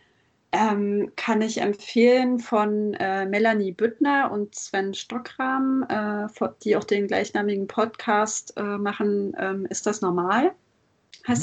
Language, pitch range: German, 205-245 Hz